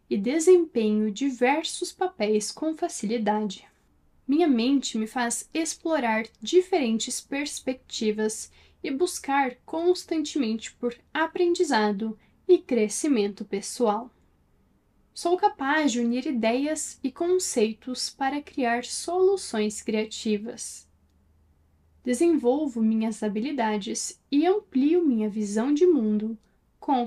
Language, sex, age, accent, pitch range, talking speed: Portuguese, female, 10-29, Brazilian, 220-320 Hz, 95 wpm